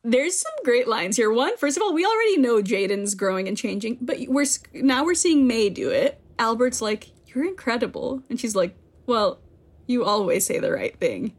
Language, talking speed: English, 200 wpm